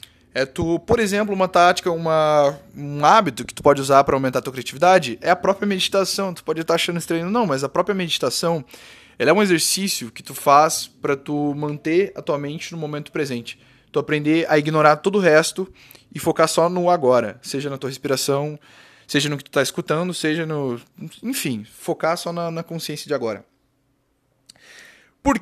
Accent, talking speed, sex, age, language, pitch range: Brazilian, 190 wpm, male, 20-39, Portuguese, 140-185 Hz